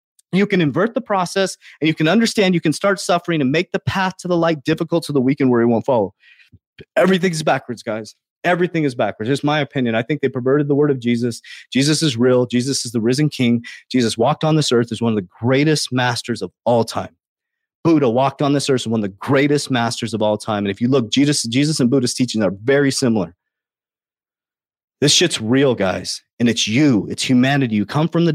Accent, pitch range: American, 125-160 Hz